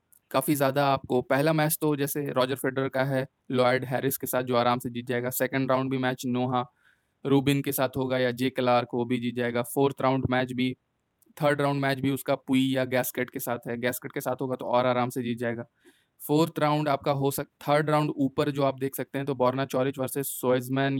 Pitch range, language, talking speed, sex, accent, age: 125-140 Hz, Hindi, 225 wpm, male, native, 20-39